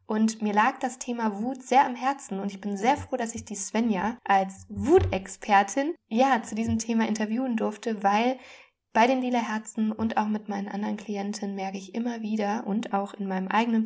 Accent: German